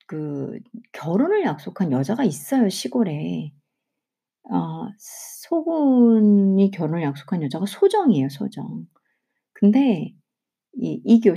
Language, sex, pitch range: Korean, female, 180-260 Hz